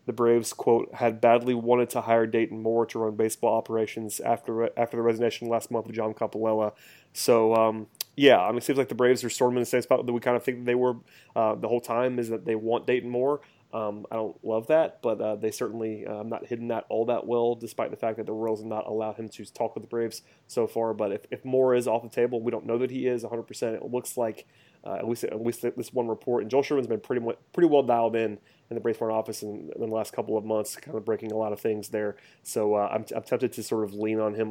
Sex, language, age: male, English, 30-49